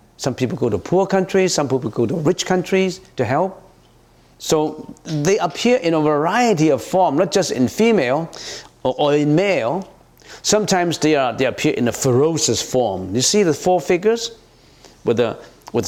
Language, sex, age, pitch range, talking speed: English, male, 50-69, 110-160 Hz, 180 wpm